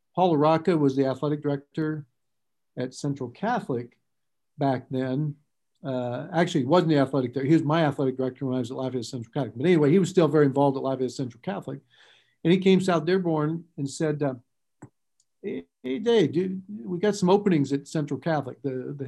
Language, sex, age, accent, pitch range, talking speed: English, male, 50-69, American, 135-160 Hz, 190 wpm